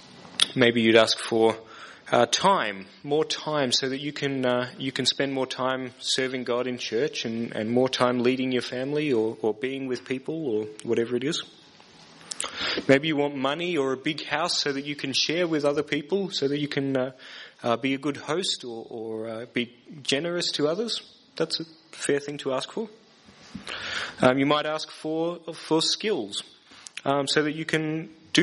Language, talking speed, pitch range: English, 195 wpm, 130-160 Hz